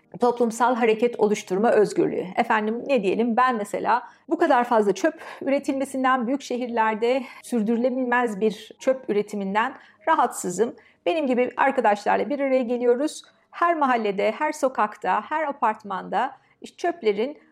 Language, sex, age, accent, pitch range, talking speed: Turkish, female, 50-69, native, 225-290 Hz, 115 wpm